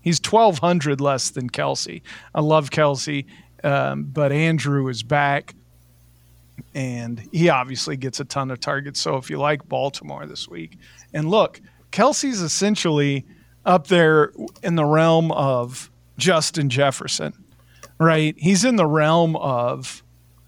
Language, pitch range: English, 135-165 Hz